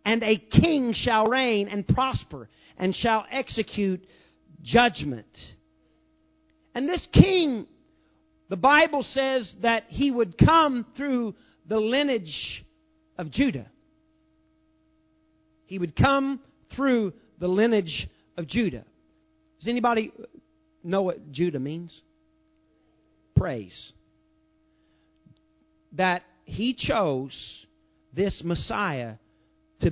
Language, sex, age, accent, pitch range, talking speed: English, male, 50-69, American, 155-265 Hz, 95 wpm